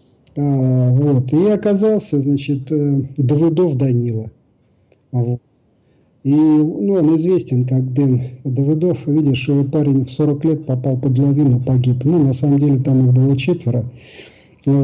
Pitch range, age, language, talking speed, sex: 125-150 Hz, 50-69, Russian, 140 wpm, male